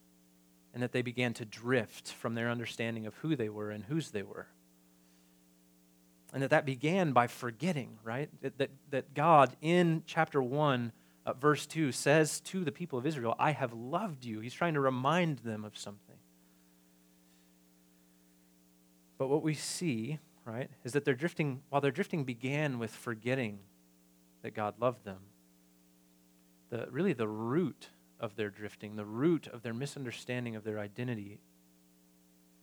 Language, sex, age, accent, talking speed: English, male, 30-49, American, 155 wpm